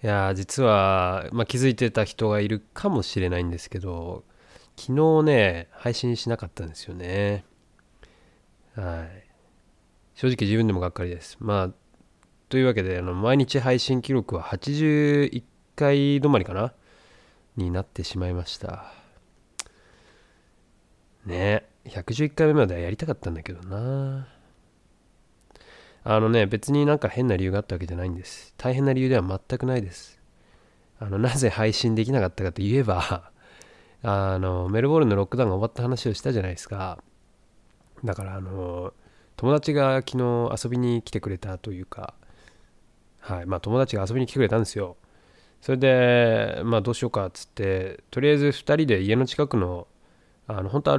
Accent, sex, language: native, male, Japanese